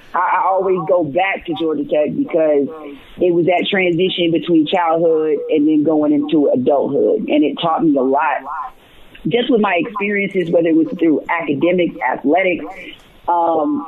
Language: English